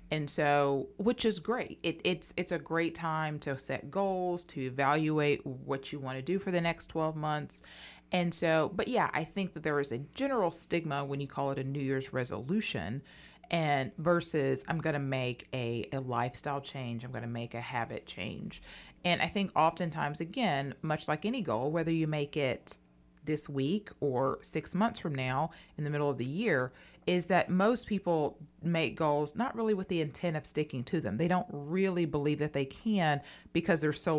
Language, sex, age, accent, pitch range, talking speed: English, female, 30-49, American, 130-170 Hz, 195 wpm